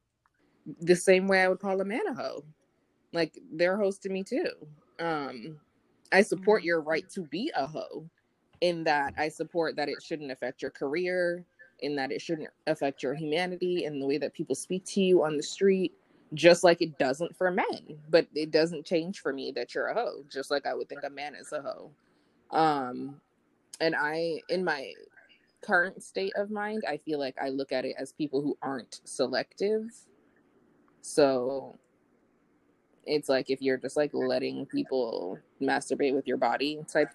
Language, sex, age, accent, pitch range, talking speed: English, female, 20-39, American, 140-180 Hz, 185 wpm